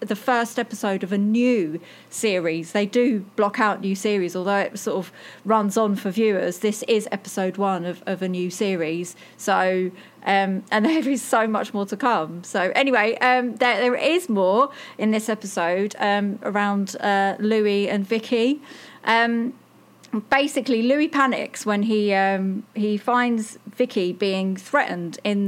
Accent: British